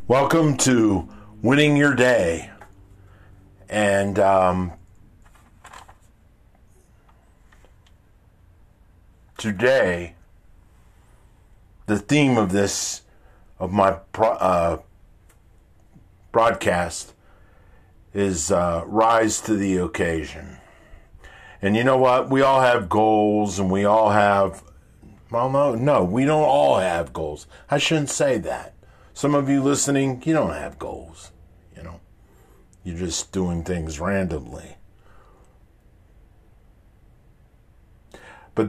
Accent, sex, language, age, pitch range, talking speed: American, male, English, 50-69, 90-110 Hz, 95 wpm